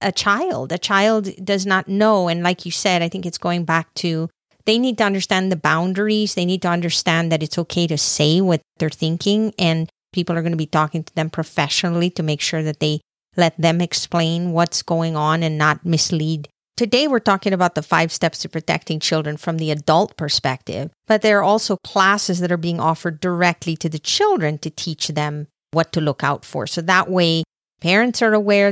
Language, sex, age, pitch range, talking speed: English, female, 40-59, 160-190 Hz, 210 wpm